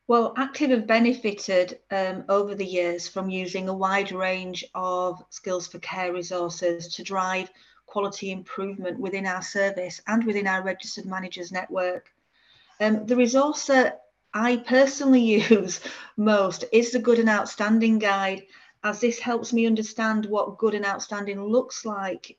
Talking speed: 150 wpm